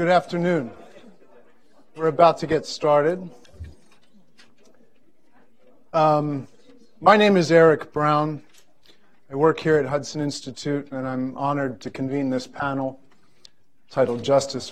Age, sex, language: 40-59, male, English